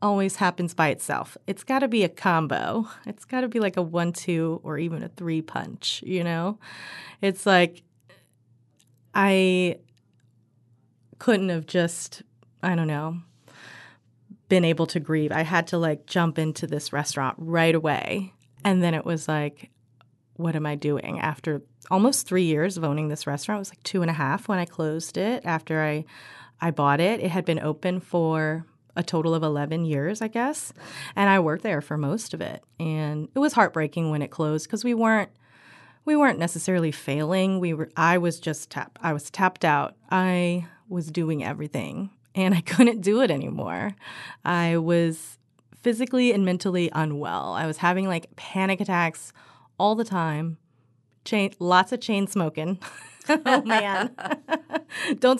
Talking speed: 170 wpm